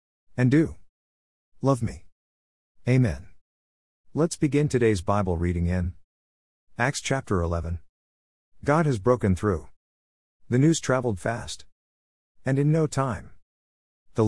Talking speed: 115 wpm